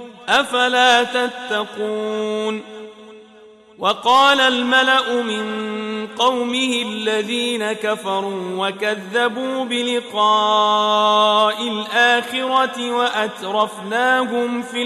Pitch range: 215-255 Hz